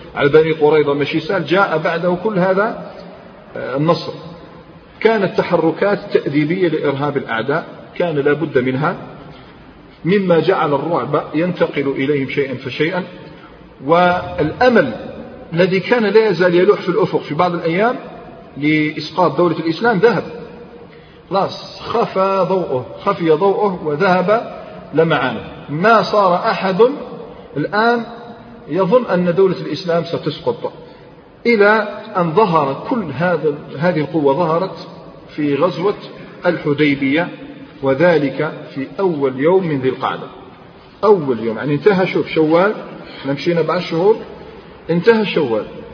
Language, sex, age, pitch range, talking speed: Arabic, male, 40-59, 150-195 Hz, 110 wpm